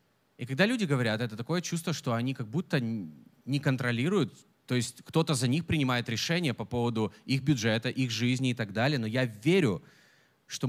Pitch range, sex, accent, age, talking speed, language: 125-170 Hz, male, native, 30-49, 185 wpm, Russian